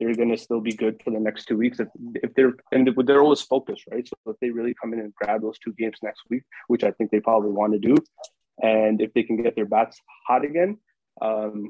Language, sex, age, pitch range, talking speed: English, male, 20-39, 110-130 Hz, 255 wpm